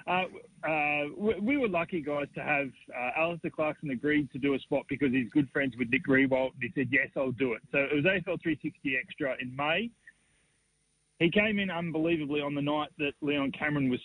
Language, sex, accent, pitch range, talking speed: English, male, Australian, 140-170 Hz, 205 wpm